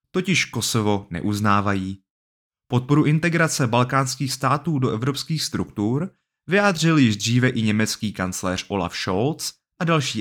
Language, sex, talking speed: Czech, male, 120 wpm